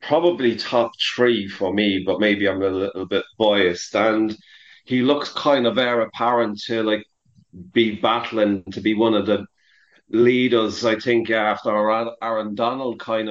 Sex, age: male, 30-49